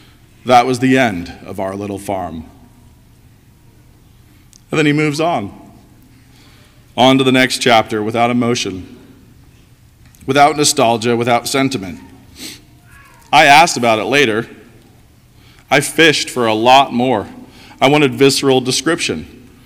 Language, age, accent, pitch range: English, 40-59, American, 110-130 Hz